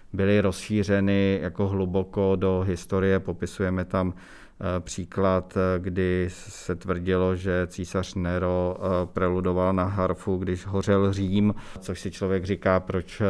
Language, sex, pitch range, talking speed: Czech, male, 95-100 Hz, 115 wpm